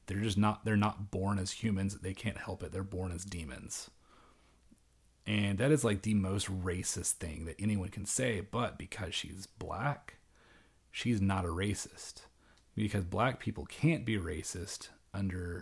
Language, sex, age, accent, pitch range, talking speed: English, male, 30-49, American, 90-105 Hz, 165 wpm